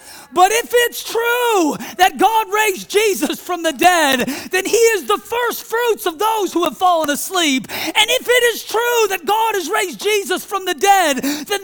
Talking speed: 190 wpm